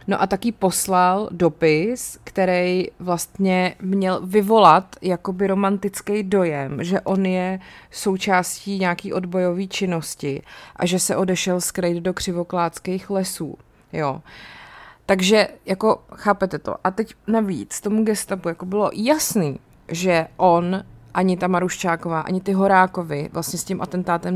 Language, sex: Czech, female